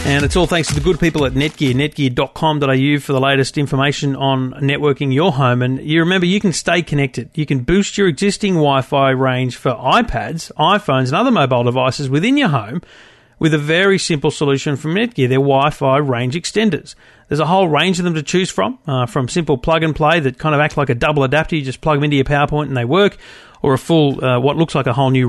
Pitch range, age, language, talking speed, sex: 135-165 Hz, 40-59, English, 230 wpm, male